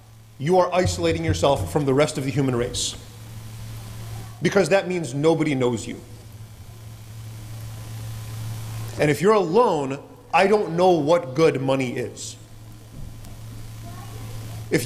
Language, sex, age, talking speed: English, male, 30-49, 115 wpm